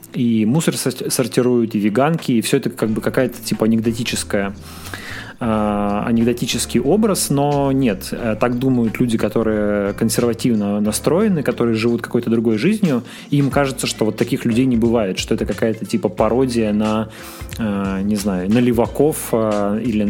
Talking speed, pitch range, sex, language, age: 150 wpm, 110-130 Hz, male, Russian, 20-39